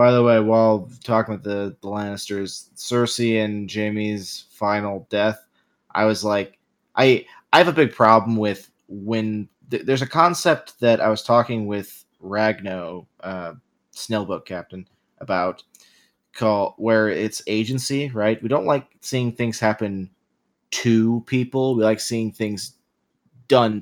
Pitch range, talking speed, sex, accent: 105-125 Hz, 145 wpm, male, American